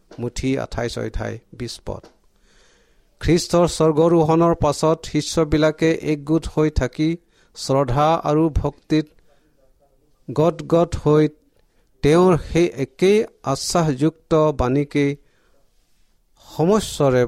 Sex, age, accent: male, 50-69, Indian